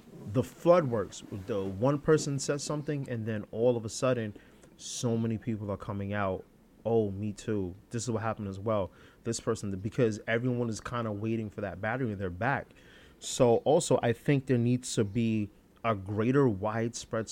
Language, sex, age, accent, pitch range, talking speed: English, male, 30-49, American, 105-135 Hz, 185 wpm